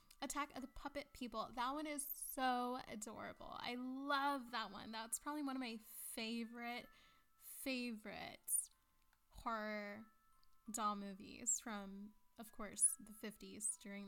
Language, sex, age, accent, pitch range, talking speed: English, female, 10-29, American, 220-270 Hz, 130 wpm